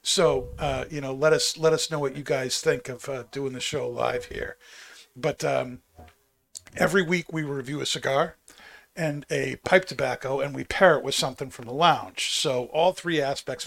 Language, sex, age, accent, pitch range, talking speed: English, male, 50-69, American, 130-160 Hz, 200 wpm